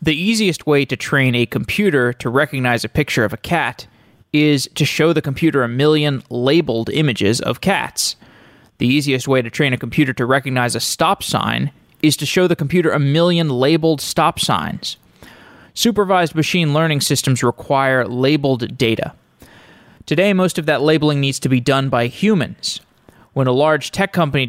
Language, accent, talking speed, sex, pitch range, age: English, American, 170 wpm, male, 130-160 Hz, 20-39